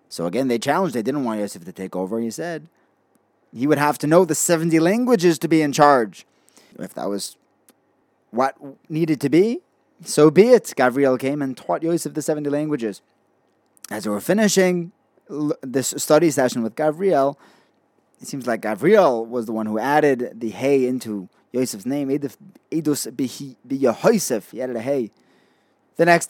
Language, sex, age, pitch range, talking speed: English, male, 30-49, 120-160 Hz, 165 wpm